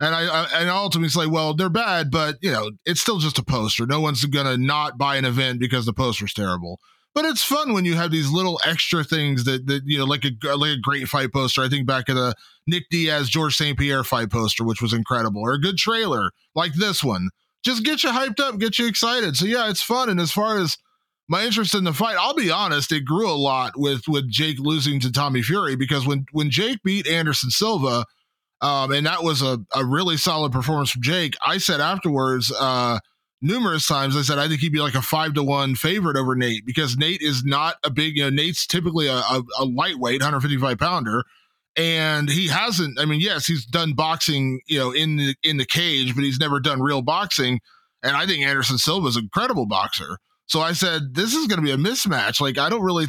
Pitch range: 135-175 Hz